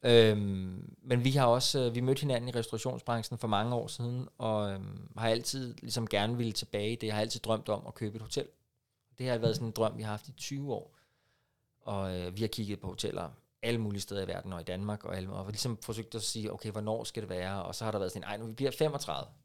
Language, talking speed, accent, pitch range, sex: Danish, 245 wpm, native, 110-135 Hz, male